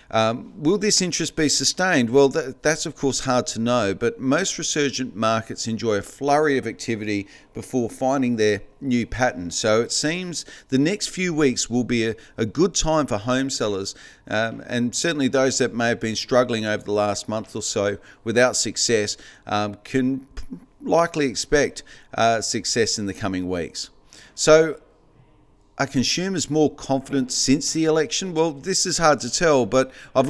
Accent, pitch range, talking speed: Australian, 115-145 Hz, 175 wpm